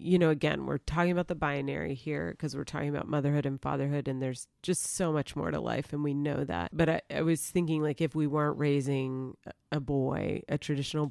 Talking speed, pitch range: 225 wpm, 145-170 Hz